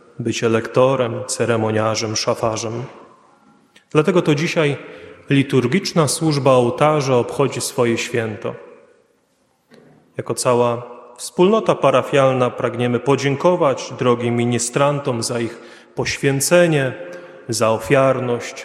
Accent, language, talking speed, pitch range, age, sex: native, Polish, 85 wpm, 120-140 Hz, 30-49, male